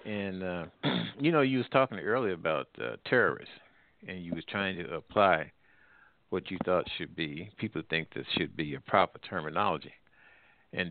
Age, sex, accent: 60-79, male, American